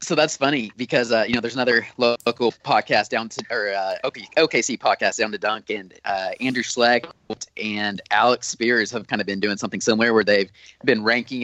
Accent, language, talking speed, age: American, English, 200 wpm, 20-39